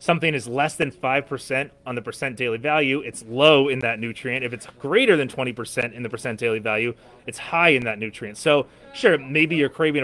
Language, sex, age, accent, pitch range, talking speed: English, male, 30-49, American, 120-150 Hz, 210 wpm